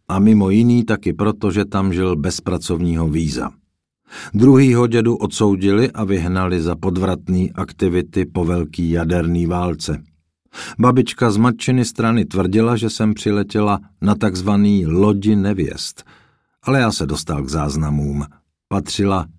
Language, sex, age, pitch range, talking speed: Czech, male, 50-69, 80-105 Hz, 130 wpm